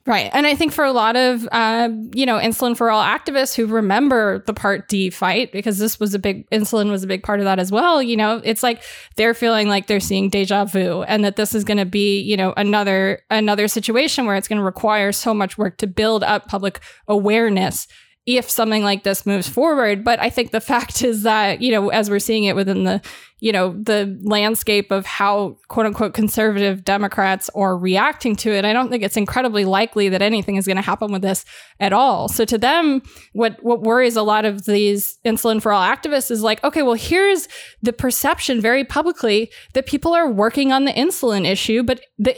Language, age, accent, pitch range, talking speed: English, 20-39, American, 205-245 Hz, 220 wpm